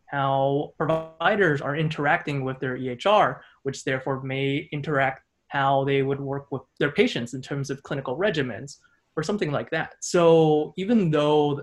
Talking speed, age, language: 155 wpm, 20-39, English